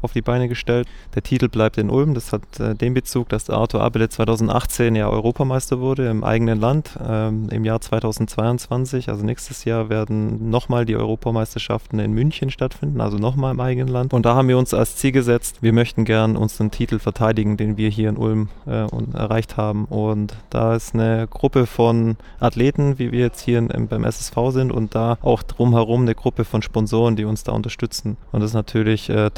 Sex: male